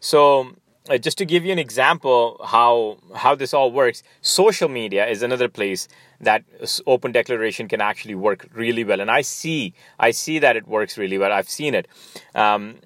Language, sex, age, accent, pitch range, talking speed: English, male, 30-49, Indian, 120-150 Hz, 185 wpm